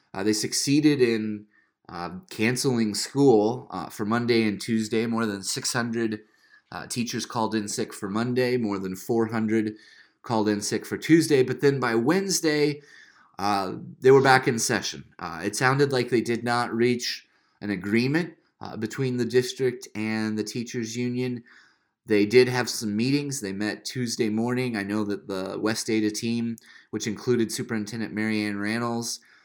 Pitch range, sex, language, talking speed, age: 110-125 Hz, male, English, 160 wpm, 30-49